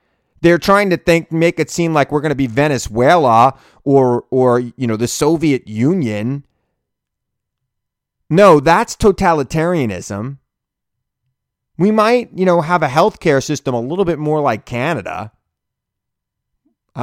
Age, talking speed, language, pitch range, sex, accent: 30-49, 130 wpm, English, 110-160 Hz, male, American